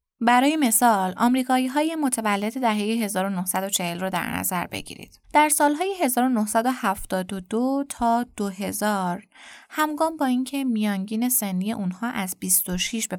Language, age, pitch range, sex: Persian, 20-39, 195-250 Hz, female